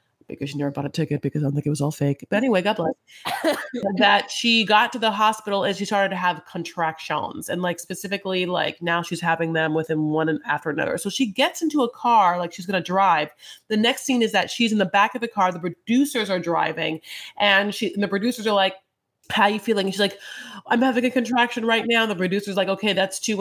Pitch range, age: 180-215 Hz, 30-49